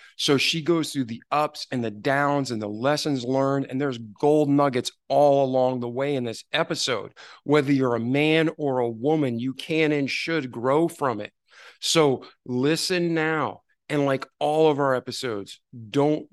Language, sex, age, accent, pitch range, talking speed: English, male, 50-69, American, 125-145 Hz, 175 wpm